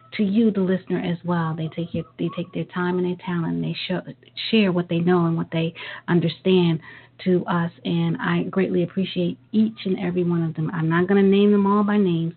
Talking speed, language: 235 wpm, English